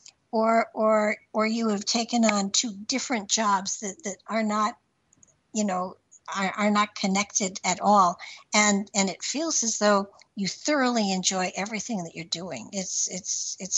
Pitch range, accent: 190-215 Hz, American